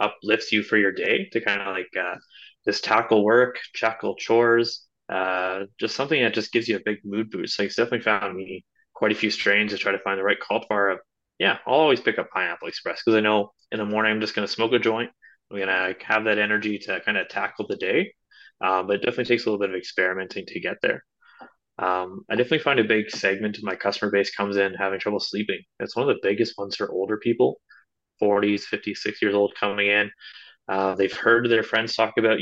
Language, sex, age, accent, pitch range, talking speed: English, male, 20-39, American, 100-110 Hz, 235 wpm